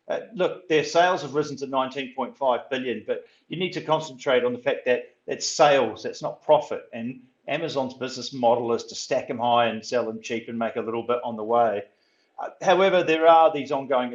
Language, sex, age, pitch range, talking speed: English, male, 40-59, 110-130 Hz, 210 wpm